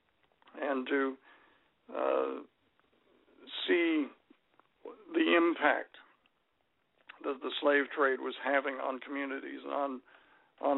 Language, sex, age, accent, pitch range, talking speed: English, male, 60-79, American, 135-155 Hz, 95 wpm